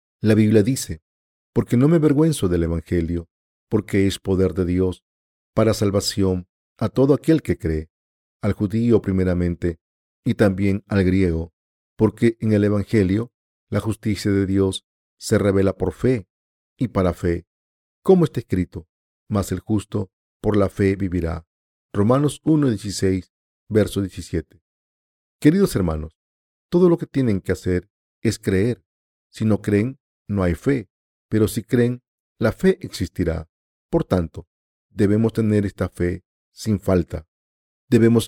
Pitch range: 85-115 Hz